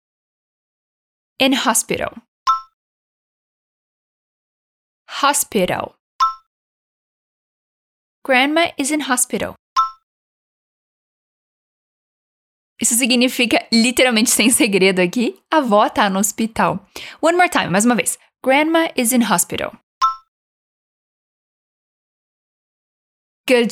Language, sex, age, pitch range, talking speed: Portuguese, female, 10-29, 215-285 Hz, 75 wpm